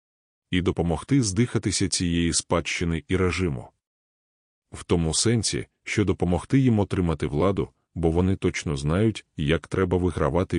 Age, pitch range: 20-39, 85-100 Hz